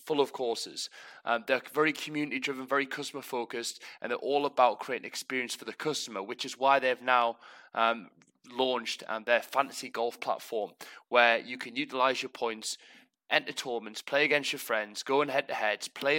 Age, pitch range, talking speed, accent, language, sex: 20-39, 115-135 Hz, 170 wpm, British, English, male